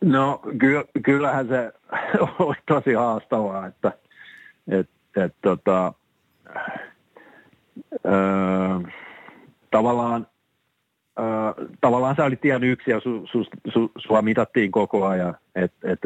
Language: Finnish